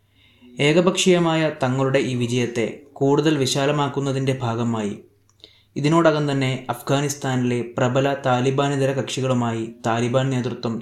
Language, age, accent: Malayalam, 20-39, native